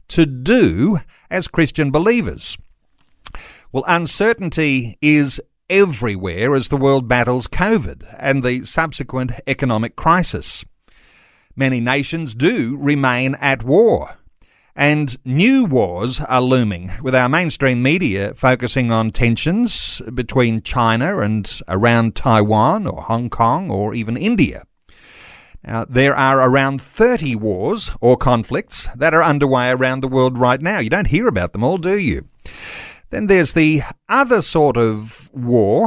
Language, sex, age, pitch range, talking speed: English, male, 50-69, 120-155 Hz, 130 wpm